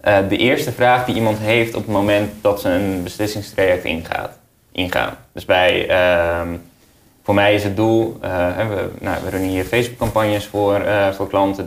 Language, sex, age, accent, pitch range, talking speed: Dutch, male, 20-39, Dutch, 90-105 Hz, 175 wpm